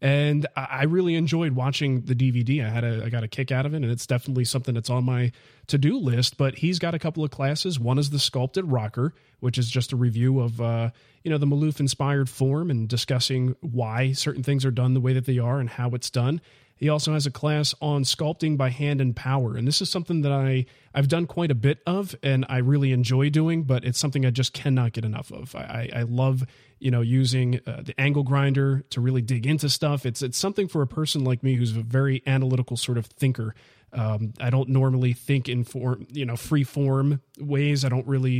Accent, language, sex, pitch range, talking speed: American, English, male, 125-145 Hz, 235 wpm